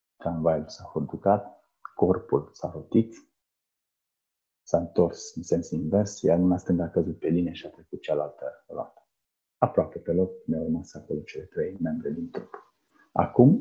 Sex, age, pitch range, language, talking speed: male, 30-49, 95-130 Hz, Romanian, 155 wpm